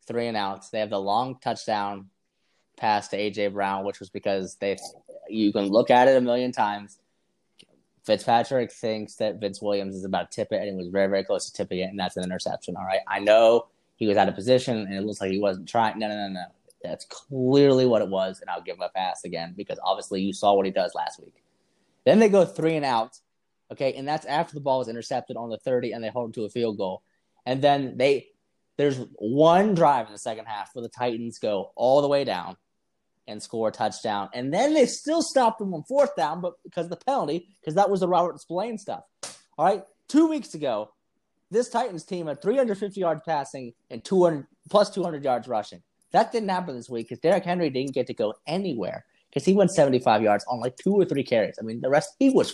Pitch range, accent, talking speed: 105-170 Hz, American, 235 wpm